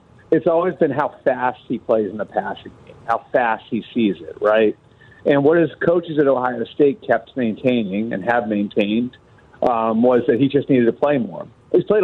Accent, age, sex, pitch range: American, 40-59, male, 115-140 Hz